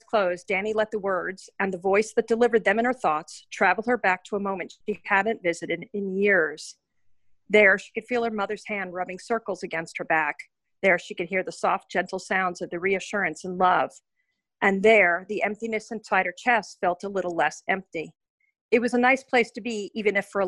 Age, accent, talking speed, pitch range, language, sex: 40-59, American, 215 wpm, 175-220 Hz, English, female